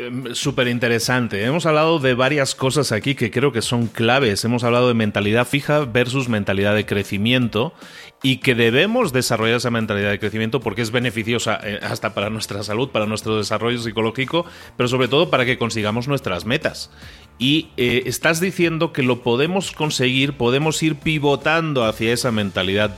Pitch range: 110-130 Hz